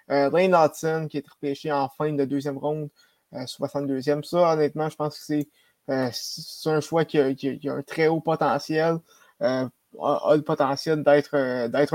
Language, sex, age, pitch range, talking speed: French, male, 20-39, 140-155 Hz, 200 wpm